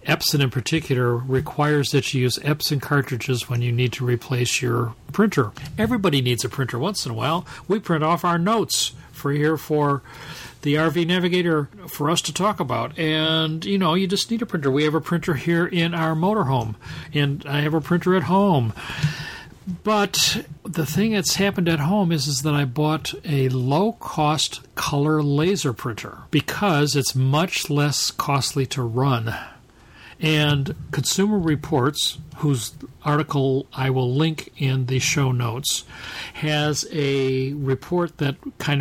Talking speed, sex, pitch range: 160 wpm, male, 135-170 Hz